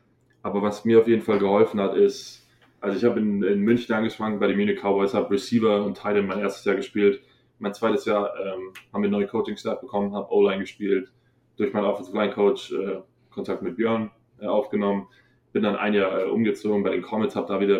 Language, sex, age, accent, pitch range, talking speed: German, male, 20-39, German, 100-115 Hz, 210 wpm